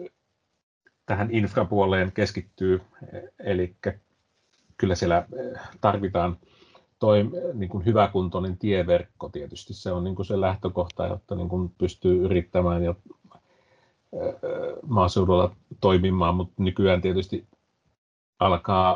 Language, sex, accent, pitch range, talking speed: Finnish, male, native, 90-105 Hz, 90 wpm